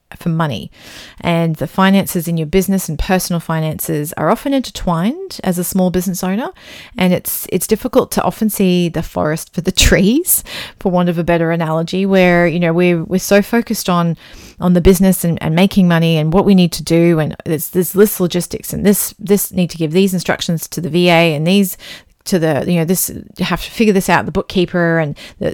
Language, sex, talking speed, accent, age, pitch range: English, female, 210 wpm, Australian, 30-49, 170-195 Hz